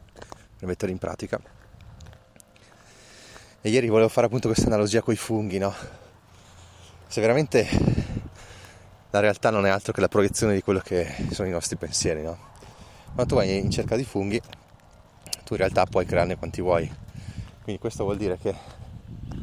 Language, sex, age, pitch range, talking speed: Italian, male, 20-39, 95-110 Hz, 160 wpm